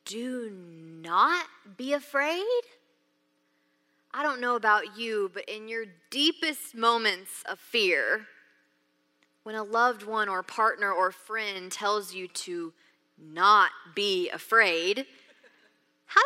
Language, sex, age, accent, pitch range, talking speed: English, female, 20-39, American, 170-250 Hz, 115 wpm